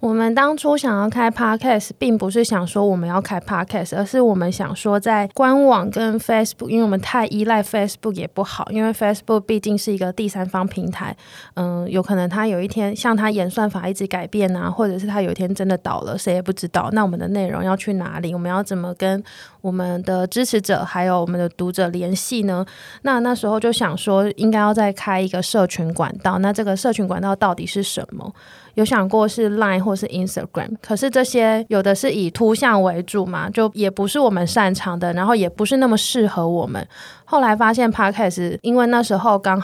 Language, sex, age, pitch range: Chinese, female, 20-39, 185-215 Hz